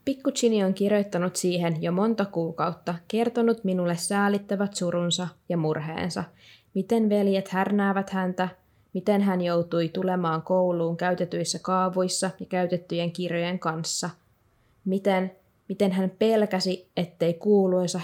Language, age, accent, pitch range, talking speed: Finnish, 20-39, native, 165-195 Hz, 115 wpm